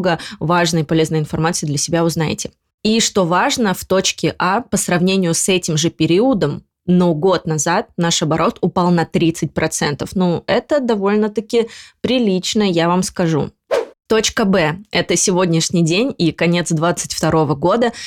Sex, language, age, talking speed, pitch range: female, Russian, 20-39, 145 wpm, 165-190 Hz